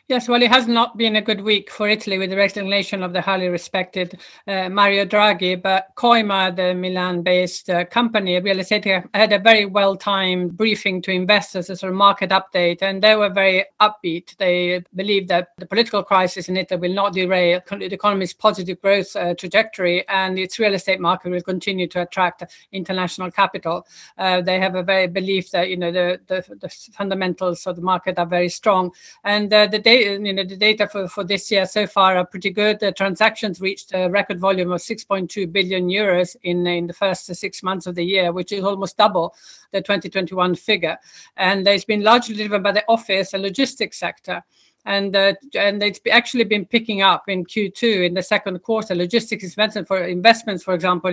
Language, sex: English, female